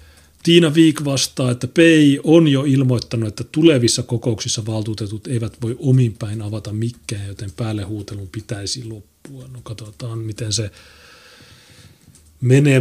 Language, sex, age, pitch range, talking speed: Finnish, male, 30-49, 80-125 Hz, 125 wpm